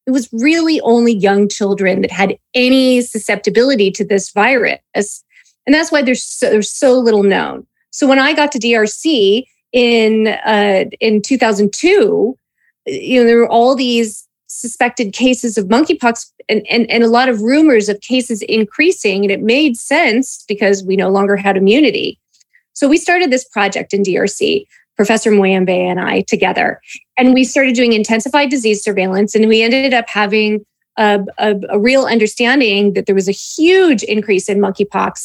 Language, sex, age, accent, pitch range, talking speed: English, female, 30-49, American, 205-255 Hz, 165 wpm